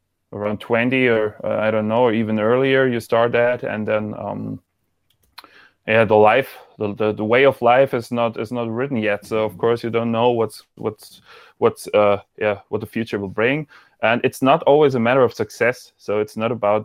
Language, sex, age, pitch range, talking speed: English, male, 20-39, 110-125 Hz, 210 wpm